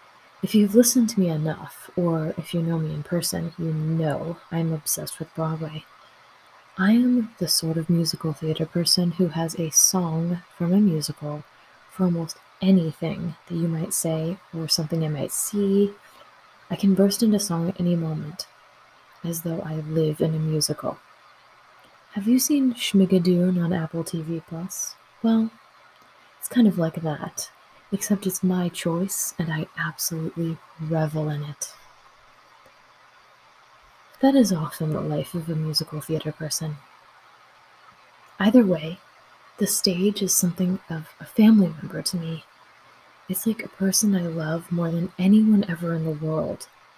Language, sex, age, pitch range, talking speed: English, female, 20-39, 160-195 Hz, 155 wpm